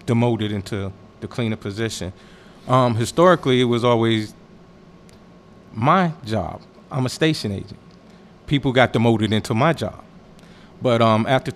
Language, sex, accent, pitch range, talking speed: English, male, American, 110-135 Hz, 130 wpm